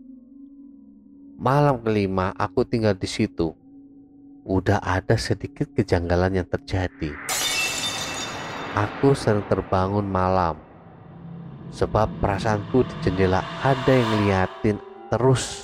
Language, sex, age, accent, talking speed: Indonesian, male, 30-49, native, 90 wpm